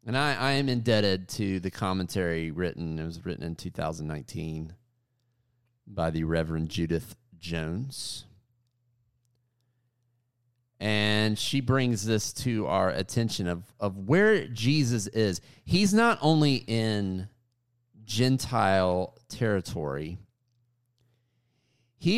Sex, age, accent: male, 30-49, American